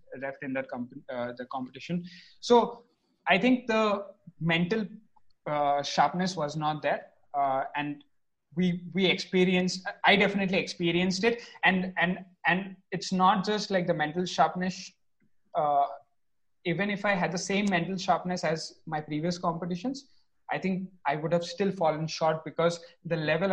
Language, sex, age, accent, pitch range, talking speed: English, male, 20-39, Indian, 145-185 Hz, 155 wpm